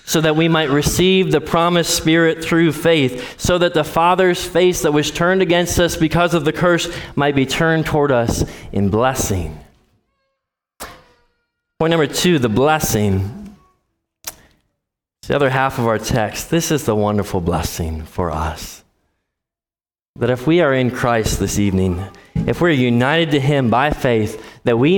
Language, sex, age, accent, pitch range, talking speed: English, male, 20-39, American, 115-175 Hz, 160 wpm